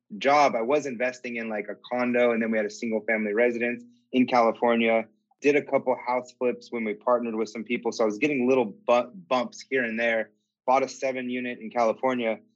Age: 30-49